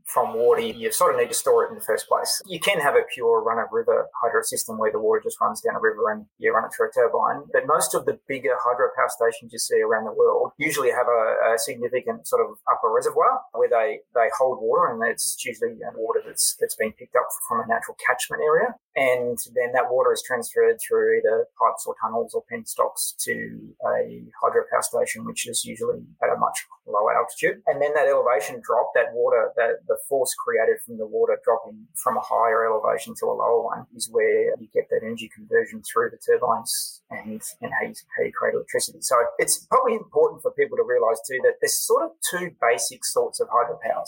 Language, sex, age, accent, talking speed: English, male, 20-39, Australian, 220 wpm